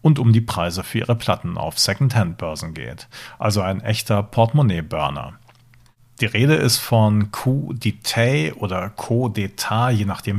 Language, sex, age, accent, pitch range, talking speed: German, male, 50-69, German, 105-125 Hz, 145 wpm